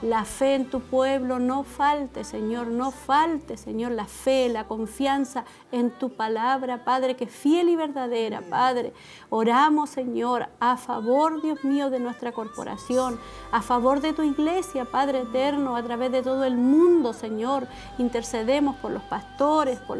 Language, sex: Spanish, female